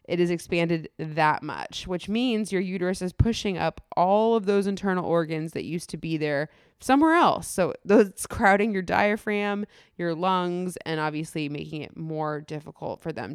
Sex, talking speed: female, 175 wpm